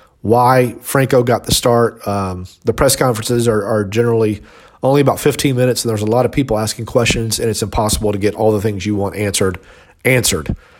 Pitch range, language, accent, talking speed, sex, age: 115-145 Hz, English, American, 200 wpm, male, 40-59